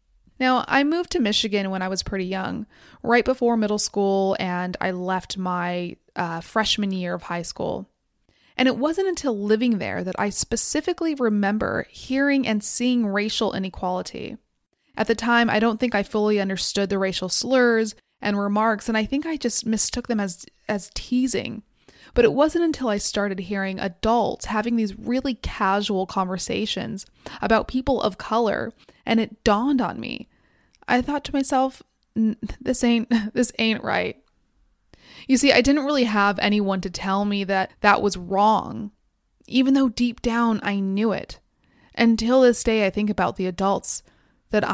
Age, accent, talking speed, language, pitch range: 20-39, American, 165 wpm, English, 200-245 Hz